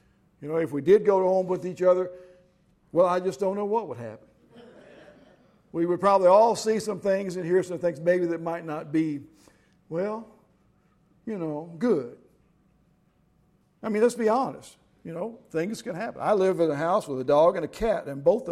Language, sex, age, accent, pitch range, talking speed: English, male, 50-69, American, 160-195 Hz, 200 wpm